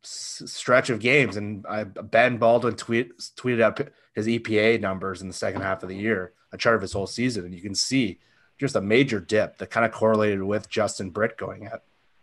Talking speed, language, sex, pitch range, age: 210 wpm, English, male, 100-125 Hz, 30-49